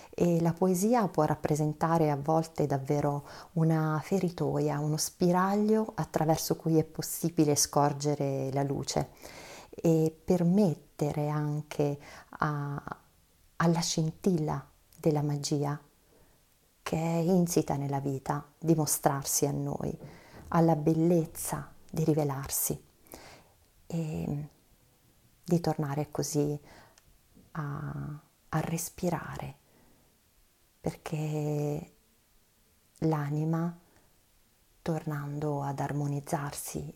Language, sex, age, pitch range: Italian, female, 40-59, 145-165 Hz